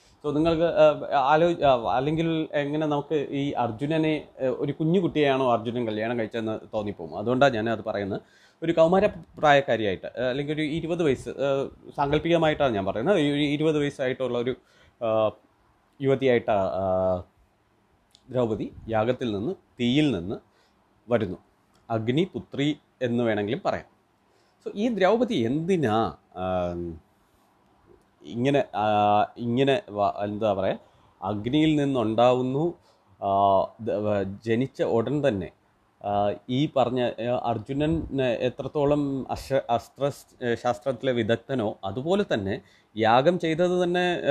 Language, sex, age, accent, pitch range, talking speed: Malayalam, male, 30-49, native, 110-155 Hz, 90 wpm